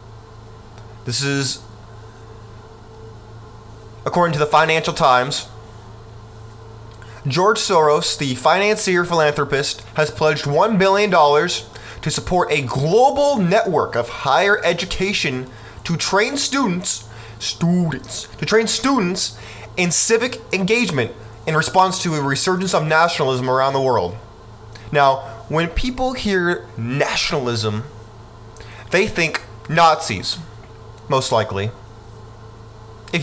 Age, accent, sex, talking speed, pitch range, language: 20-39, American, male, 100 wpm, 110-155 Hz, English